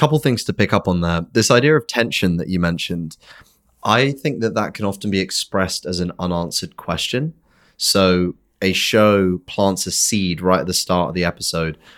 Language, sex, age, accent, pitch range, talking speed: English, male, 30-49, British, 90-110 Hz, 195 wpm